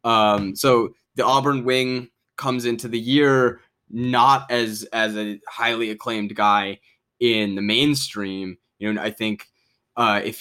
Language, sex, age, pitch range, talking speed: English, male, 20-39, 100-120 Hz, 145 wpm